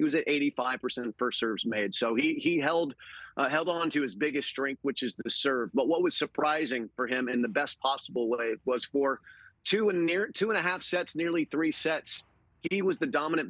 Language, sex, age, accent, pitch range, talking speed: English, male, 40-59, American, 130-160 Hz, 220 wpm